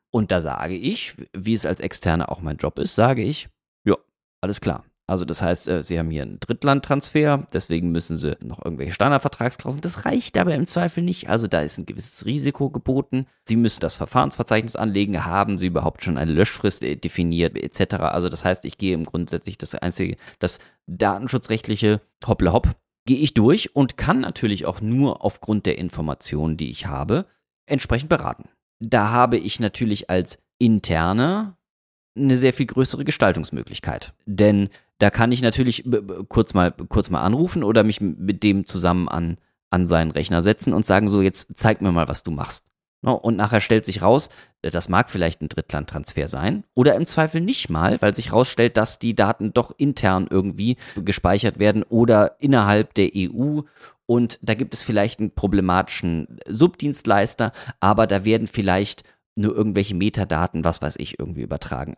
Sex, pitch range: male, 90-120 Hz